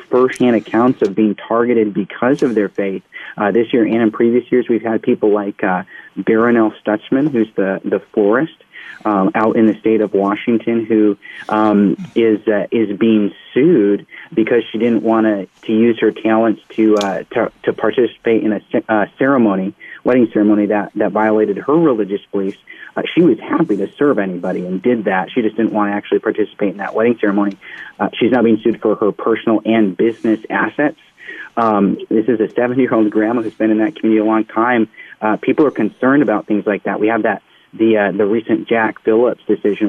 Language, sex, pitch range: English, male, 105-115 Hz